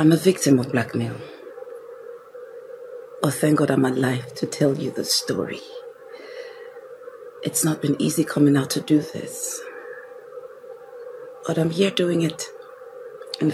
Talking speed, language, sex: 135 wpm, English, female